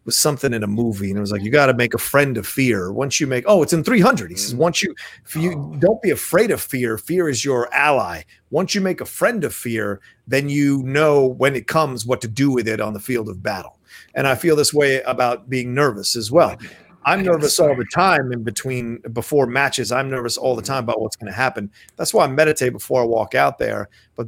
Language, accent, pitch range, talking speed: English, American, 120-150 Hz, 250 wpm